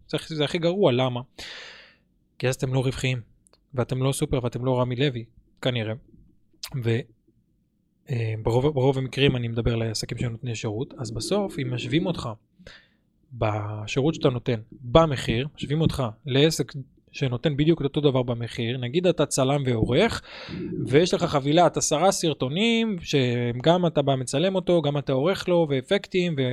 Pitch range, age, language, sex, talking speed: 125-165 Hz, 20-39, Hebrew, male, 140 wpm